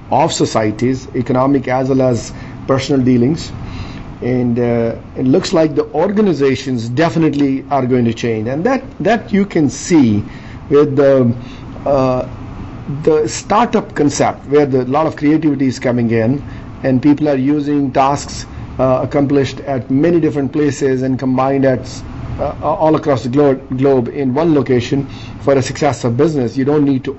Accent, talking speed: Indian, 155 wpm